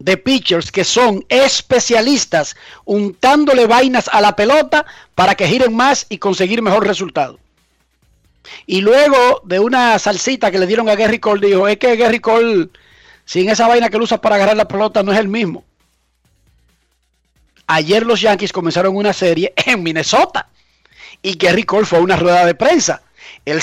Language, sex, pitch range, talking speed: Spanish, male, 185-245 Hz, 170 wpm